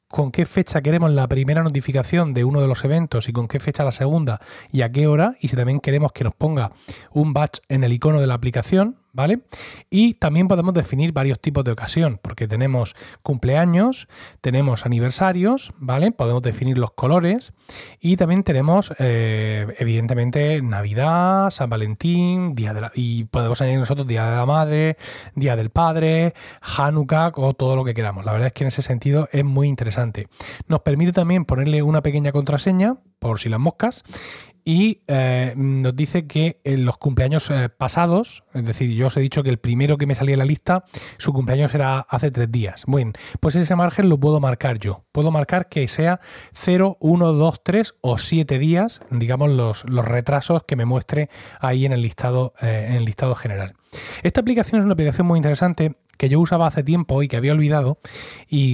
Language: Spanish